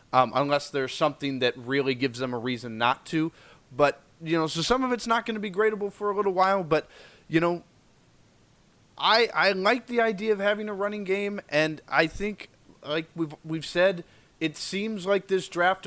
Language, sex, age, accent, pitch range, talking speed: English, male, 20-39, American, 145-195 Hz, 200 wpm